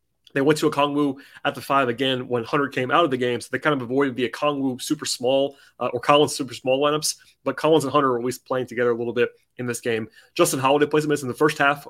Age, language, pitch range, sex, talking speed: 30-49, English, 130-155 Hz, male, 275 wpm